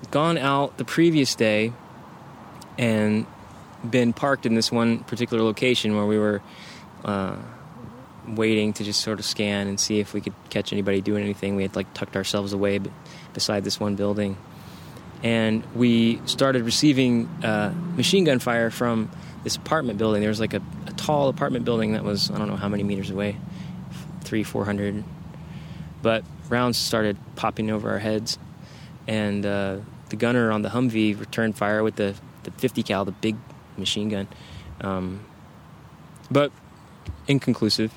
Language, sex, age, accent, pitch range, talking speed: English, male, 20-39, American, 105-125 Hz, 160 wpm